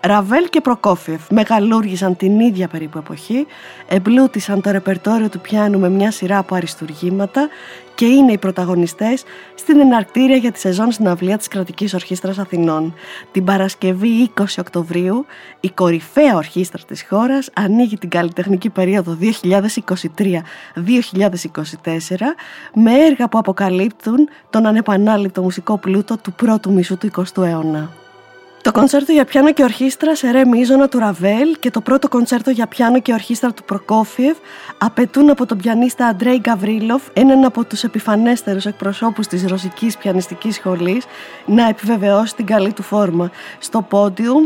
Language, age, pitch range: Greek, 20-39, 185-240 Hz